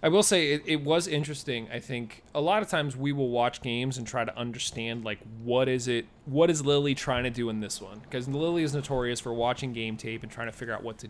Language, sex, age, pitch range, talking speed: English, male, 30-49, 120-150 Hz, 265 wpm